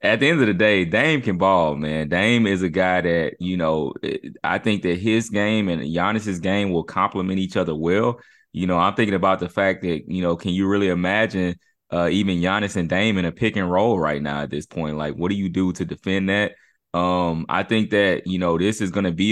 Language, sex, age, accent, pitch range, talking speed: English, male, 20-39, American, 90-105 Hz, 240 wpm